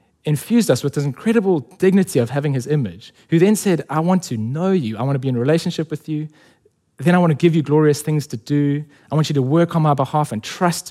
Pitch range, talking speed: 120-155 Hz, 260 wpm